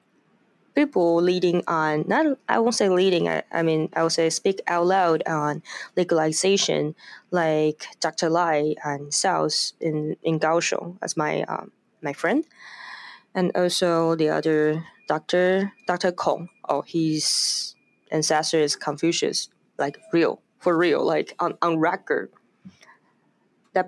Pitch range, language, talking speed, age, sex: 155-190 Hz, English, 135 wpm, 20-39, female